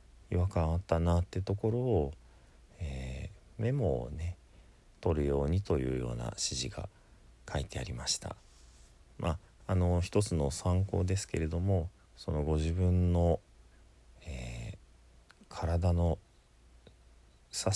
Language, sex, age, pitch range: Japanese, male, 40-59, 65-95 Hz